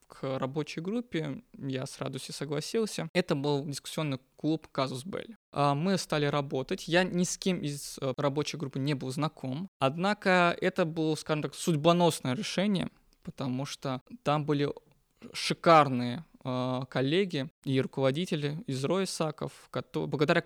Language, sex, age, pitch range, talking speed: Russian, male, 20-39, 140-170 Hz, 125 wpm